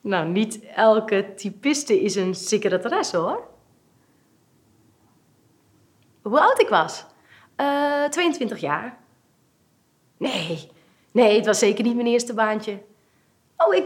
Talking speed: 115 wpm